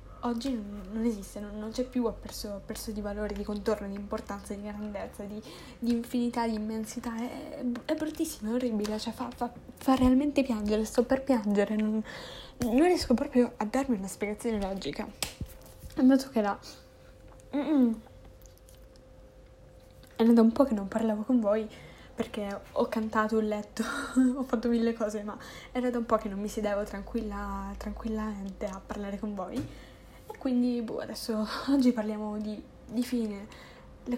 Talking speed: 160 wpm